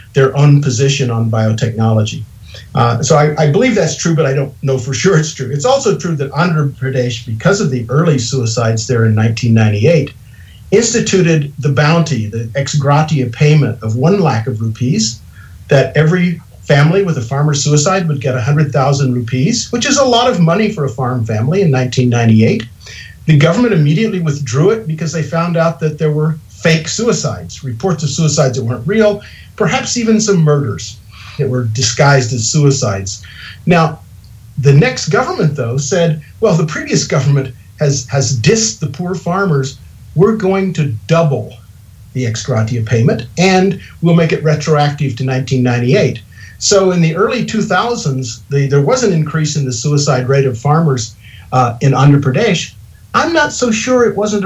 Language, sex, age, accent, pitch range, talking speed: English, male, 50-69, American, 120-165 Hz, 170 wpm